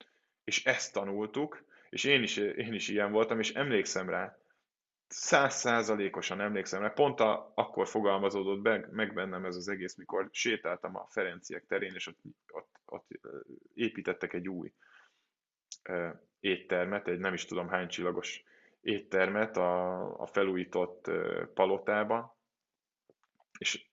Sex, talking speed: male, 125 wpm